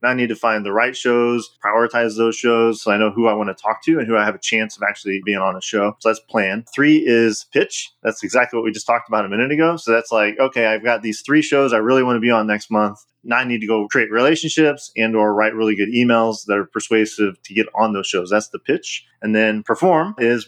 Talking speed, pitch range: 270 wpm, 110-125 Hz